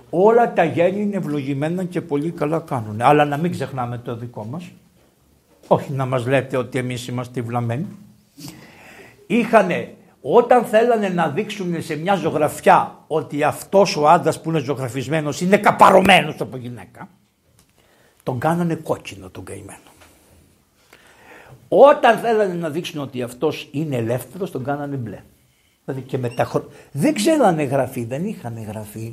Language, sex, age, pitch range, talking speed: Greek, male, 60-79, 125-180 Hz, 140 wpm